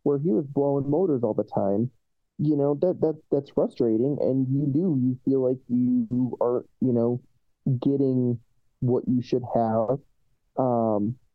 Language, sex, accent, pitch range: English, male, American, 125-155 Hz